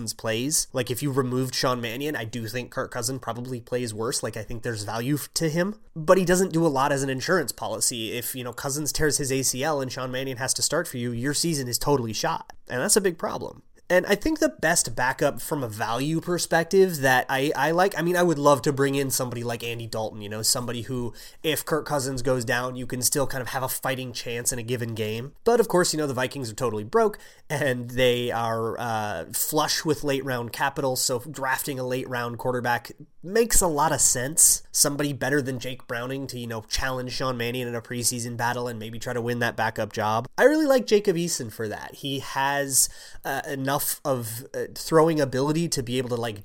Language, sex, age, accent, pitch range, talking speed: English, male, 30-49, American, 120-150 Hz, 230 wpm